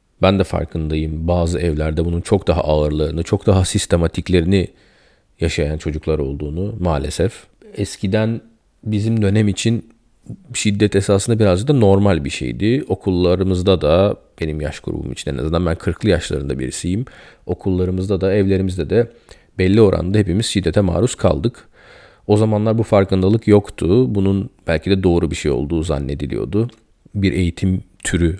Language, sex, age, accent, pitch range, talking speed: Turkish, male, 40-59, native, 85-110 Hz, 135 wpm